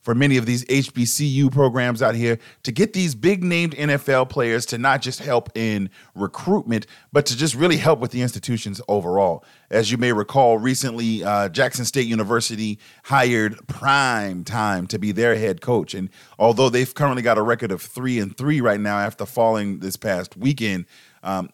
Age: 30-49